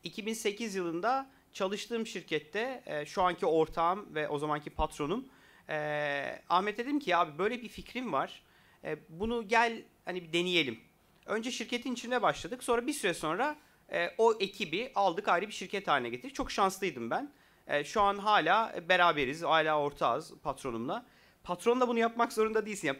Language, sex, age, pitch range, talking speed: Turkish, male, 40-59, 165-220 Hz, 150 wpm